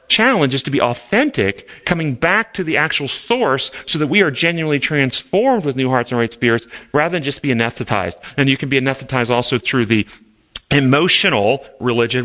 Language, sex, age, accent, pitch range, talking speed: English, male, 40-59, American, 110-135 Hz, 185 wpm